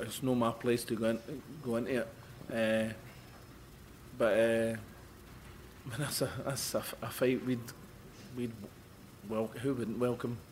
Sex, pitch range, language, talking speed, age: male, 115-130 Hz, English, 150 wpm, 30-49